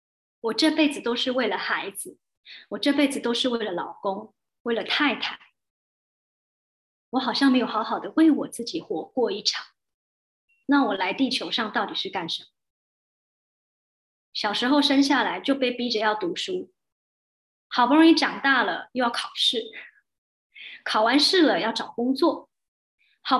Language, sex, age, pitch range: Chinese, male, 20-39, 235-305 Hz